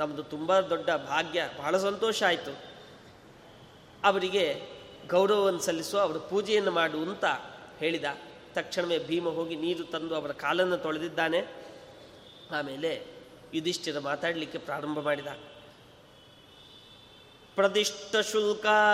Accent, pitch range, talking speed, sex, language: native, 170-205 Hz, 90 wpm, male, Kannada